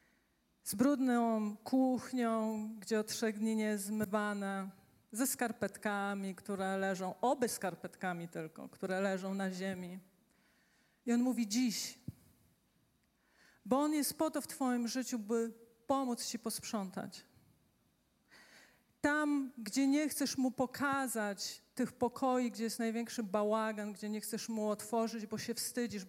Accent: native